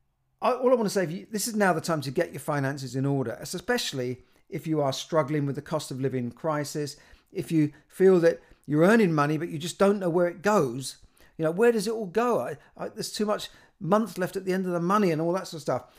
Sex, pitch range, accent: male, 140-170 Hz, British